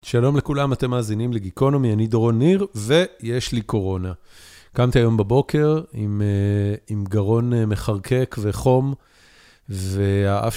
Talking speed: 115 wpm